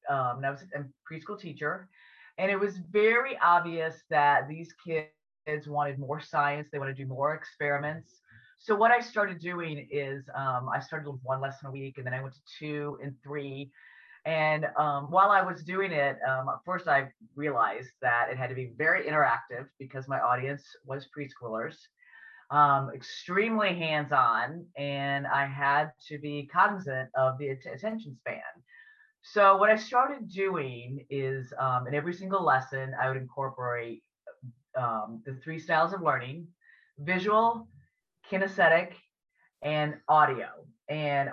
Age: 30-49